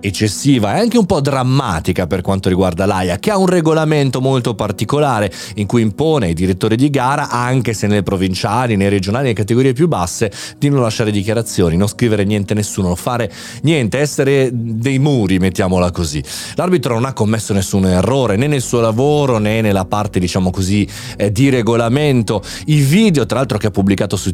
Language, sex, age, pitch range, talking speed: Italian, male, 30-49, 100-135 Hz, 185 wpm